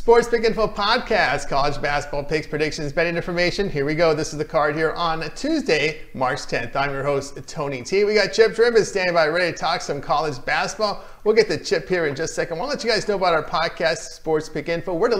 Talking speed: 245 wpm